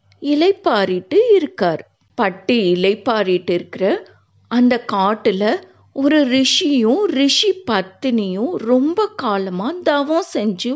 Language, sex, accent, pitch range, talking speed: Tamil, female, native, 180-270 Hz, 85 wpm